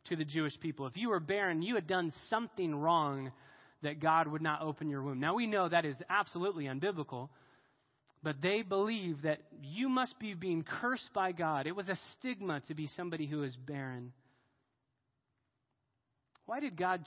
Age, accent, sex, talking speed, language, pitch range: 30-49, American, male, 180 wpm, English, 130-180 Hz